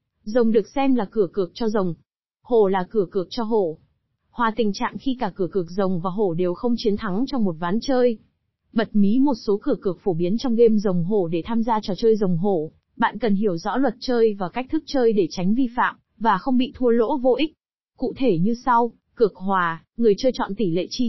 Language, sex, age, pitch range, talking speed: Vietnamese, female, 20-39, 195-245 Hz, 240 wpm